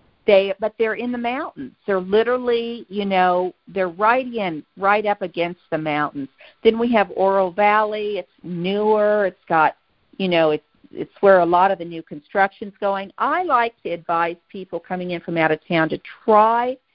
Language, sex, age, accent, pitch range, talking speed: English, female, 50-69, American, 175-225 Hz, 185 wpm